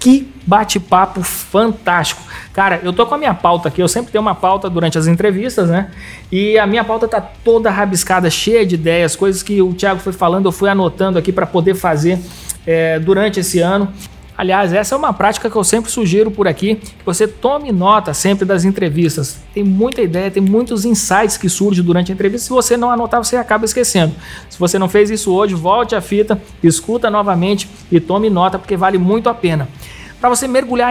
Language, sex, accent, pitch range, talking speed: Portuguese, male, Brazilian, 185-220 Hz, 200 wpm